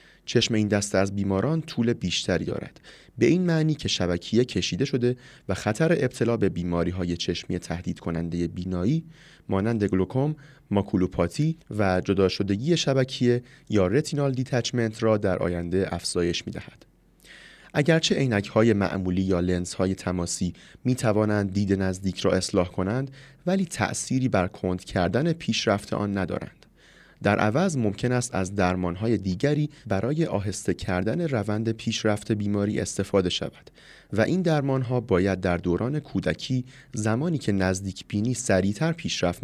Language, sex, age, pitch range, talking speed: Persian, male, 30-49, 95-135 Hz, 140 wpm